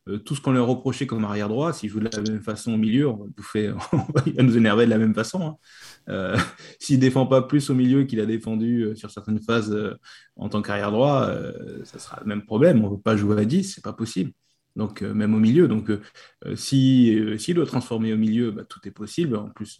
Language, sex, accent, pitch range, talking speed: French, male, French, 105-130 Hz, 240 wpm